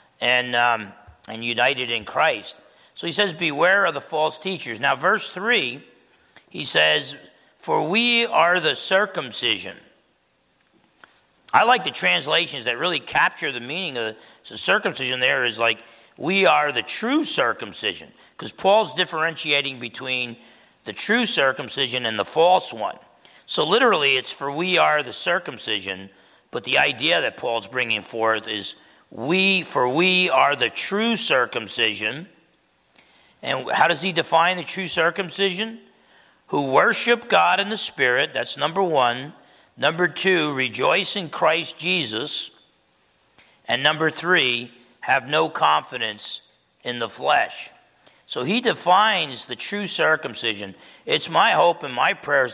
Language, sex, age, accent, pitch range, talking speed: English, male, 40-59, American, 120-185 Hz, 140 wpm